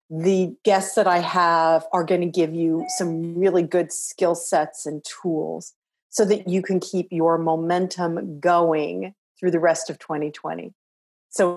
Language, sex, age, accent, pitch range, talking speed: English, female, 40-59, American, 175-220 Hz, 155 wpm